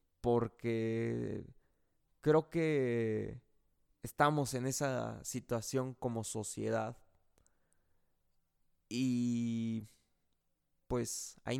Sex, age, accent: male, 20-39, Mexican